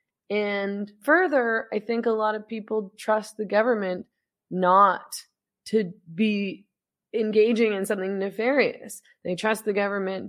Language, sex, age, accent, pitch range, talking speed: English, female, 20-39, American, 170-205 Hz, 130 wpm